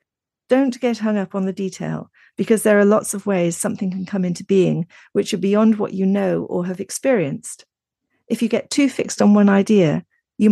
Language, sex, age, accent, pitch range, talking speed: English, female, 40-59, British, 180-220 Hz, 205 wpm